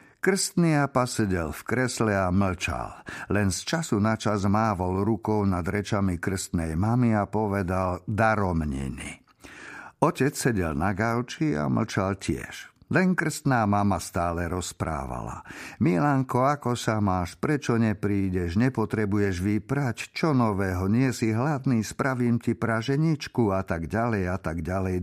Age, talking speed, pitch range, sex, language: 50-69, 130 wpm, 95-120 Hz, male, Slovak